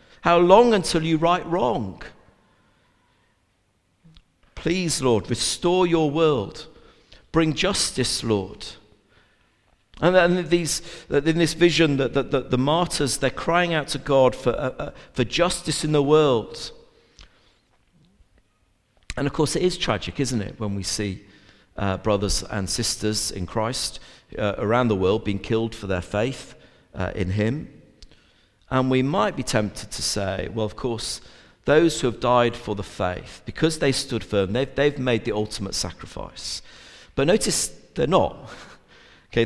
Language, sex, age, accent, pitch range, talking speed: English, male, 50-69, British, 105-160 Hz, 150 wpm